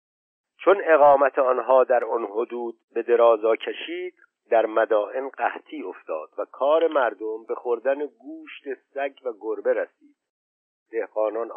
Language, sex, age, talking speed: Persian, male, 50-69, 125 wpm